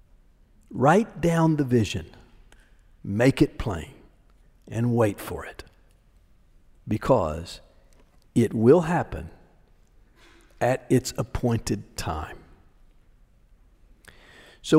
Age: 50-69